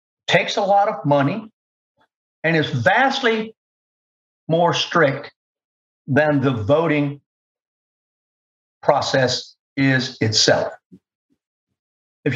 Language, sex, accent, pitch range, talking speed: English, male, American, 125-170 Hz, 85 wpm